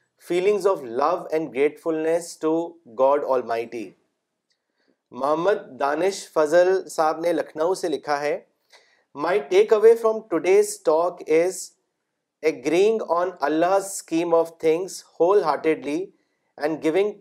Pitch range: 155-190 Hz